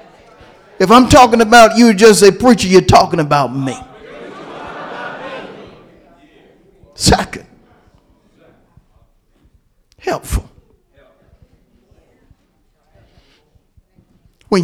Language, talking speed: English, 60 wpm